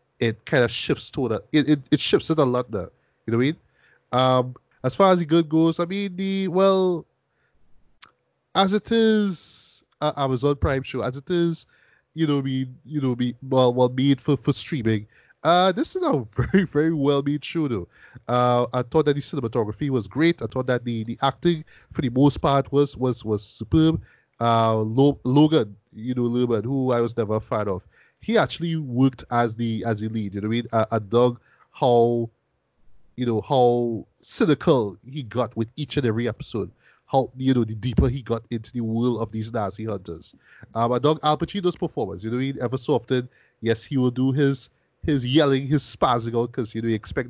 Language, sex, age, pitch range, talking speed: English, male, 20-39, 115-145 Hz, 210 wpm